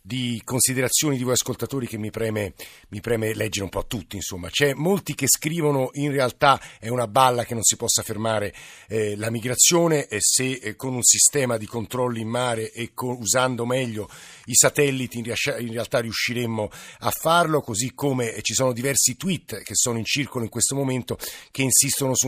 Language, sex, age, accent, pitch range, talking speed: Italian, male, 50-69, native, 115-140 Hz, 185 wpm